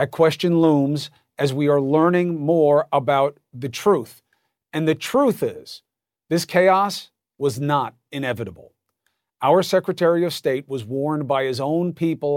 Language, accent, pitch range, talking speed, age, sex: English, American, 135-170 Hz, 145 wpm, 40-59, male